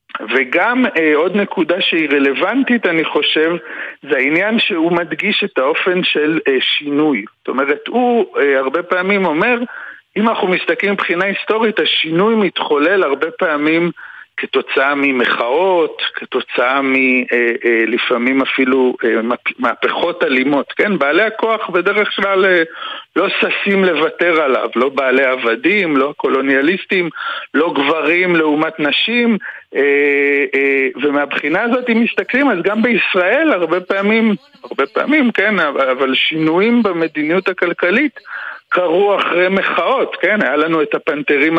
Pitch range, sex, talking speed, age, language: 140-200 Hz, male, 125 wpm, 50-69, Hebrew